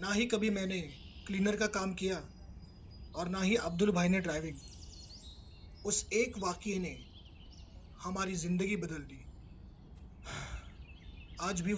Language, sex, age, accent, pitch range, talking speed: Hindi, male, 30-49, native, 150-205 Hz, 125 wpm